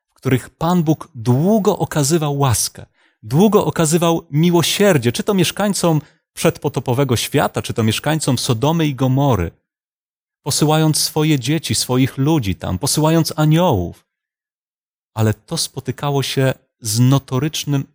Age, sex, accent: 30-49, male, native